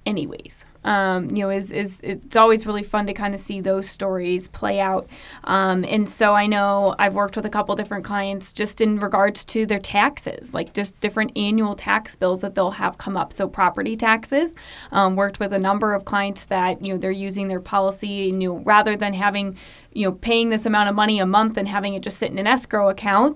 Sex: female